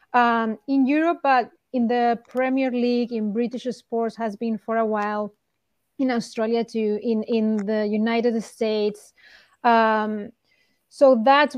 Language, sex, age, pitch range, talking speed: English, female, 30-49, 225-260 Hz, 140 wpm